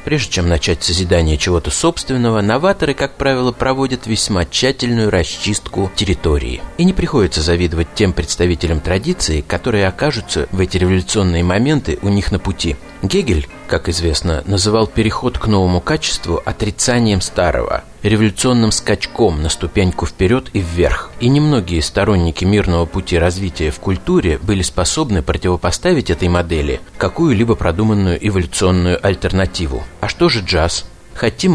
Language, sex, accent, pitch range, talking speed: Russian, male, native, 90-110 Hz, 135 wpm